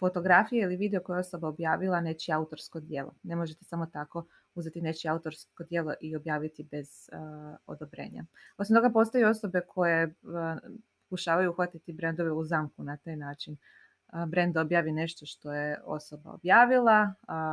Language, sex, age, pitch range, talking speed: Croatian, female, 20-39, 160-200 Hz, 155 wpm